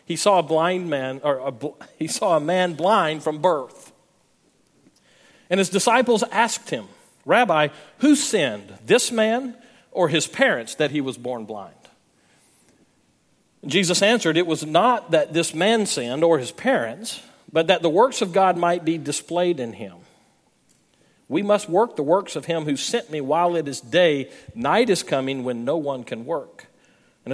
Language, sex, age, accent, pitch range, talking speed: English, male, 40-59, American, 150-205 Hz, 160 wpm